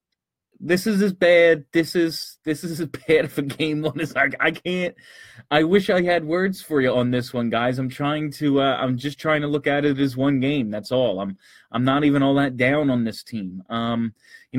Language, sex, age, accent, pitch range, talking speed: English, male, 20-39, American, 125-150 Hz, 235 wpm